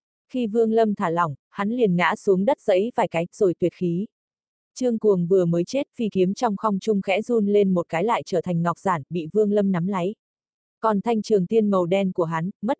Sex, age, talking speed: female, 20-39, 235 wpm